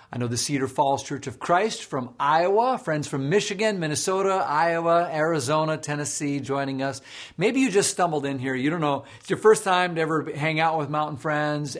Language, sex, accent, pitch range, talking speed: English, male, American, 130-170 Hz, 200 wpm